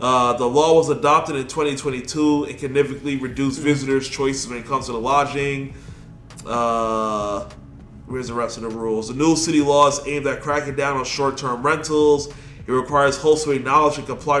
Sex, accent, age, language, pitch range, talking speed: male, American, 20-39, English, 130-145 Hz, 190 wpm